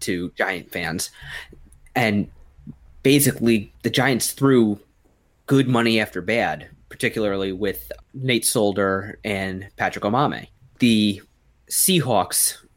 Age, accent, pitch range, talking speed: 20-39, American, 95-120 Hz, 100 wpm